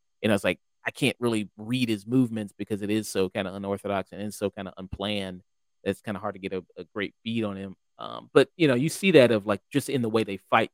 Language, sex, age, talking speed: English, male, 30-49, 275 wpm